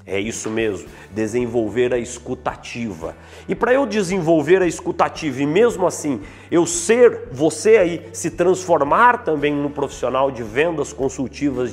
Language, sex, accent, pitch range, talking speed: Portuguese, male, Brazilian, 135-200 Hz, 140 wpm